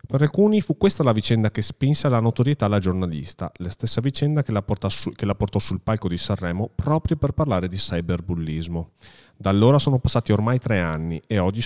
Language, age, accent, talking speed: Italian, 40-59, native, 210 wpm